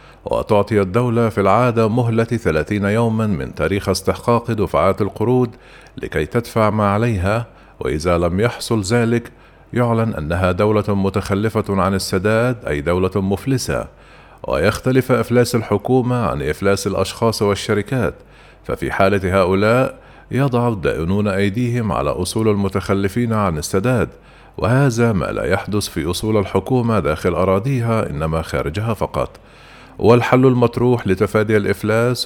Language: Arabic